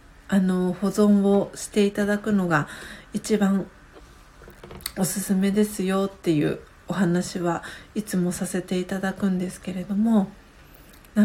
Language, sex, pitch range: Japanese, female, 185-220 Hz